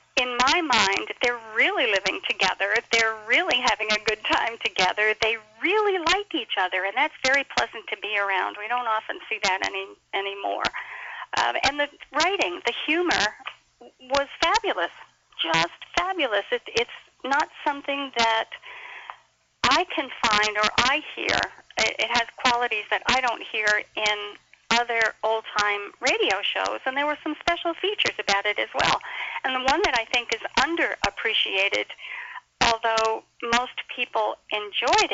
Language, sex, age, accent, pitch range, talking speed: English, female, 40-59, American, 215-320 Hz, 150 wpm